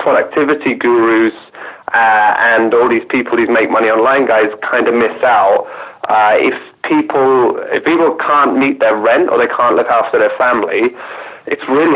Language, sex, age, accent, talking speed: English, male, 30-49, British, 170 wpm